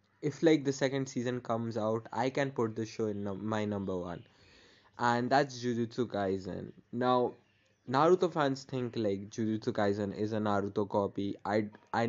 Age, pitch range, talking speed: 20-39, 105-125 Hz, 165 wpm